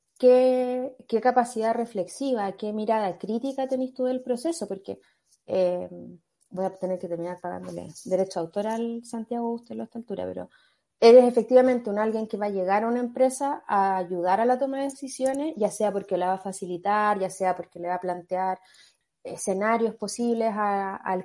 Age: 20-39